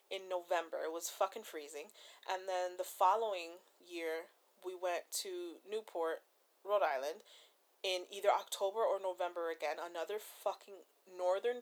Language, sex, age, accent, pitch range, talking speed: English, female, 30-49, American, 175-215 Hz, 135 wpm